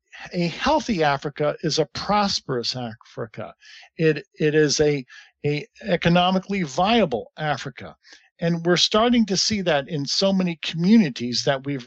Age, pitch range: 50-69, 150-195 Hz